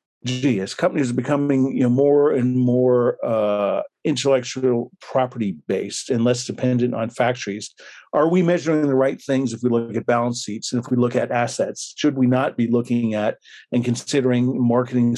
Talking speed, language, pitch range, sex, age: 180 wpm, English, 115-135 Hz, male, 50-69